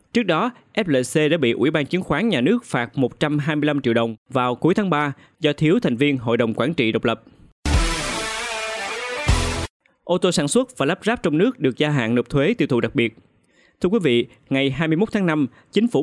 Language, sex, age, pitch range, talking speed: Vietnamese, male, 20-39, 125-165 Hz, 210 wpm